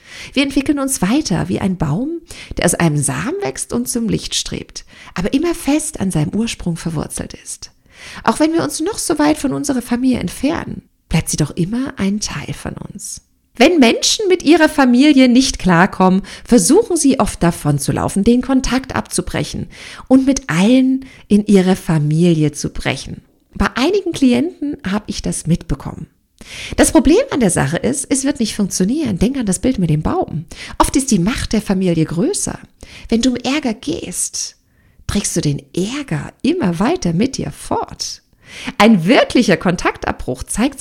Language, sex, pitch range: German, female, 170-275 Hz